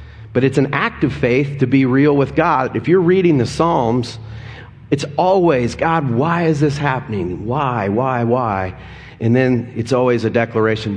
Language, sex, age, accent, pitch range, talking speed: English, male, 40-59, American, 105-140 Hz, 175 wpm